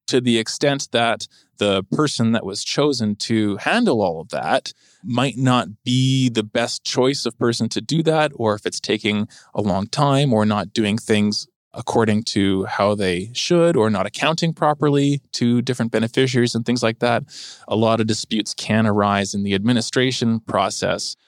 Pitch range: 105-120 Hz